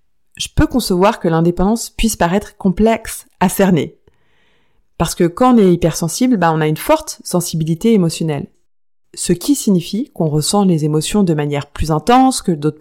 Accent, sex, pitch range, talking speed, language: French, female, 165-225 Hz, 170 wpm, French